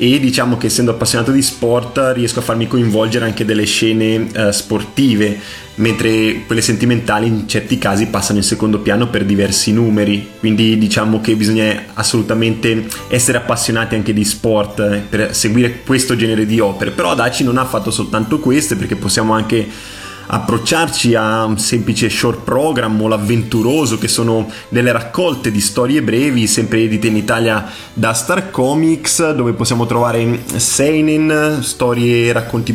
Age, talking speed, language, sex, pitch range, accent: 20-39, 155 wpm, Italian, male, 110-125 Hz, native